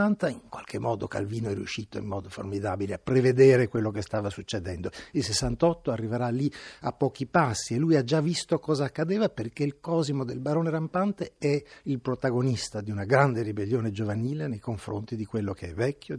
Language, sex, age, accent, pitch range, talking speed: Italian, male, 60-79, native, 105-145 Hz, 185 wpm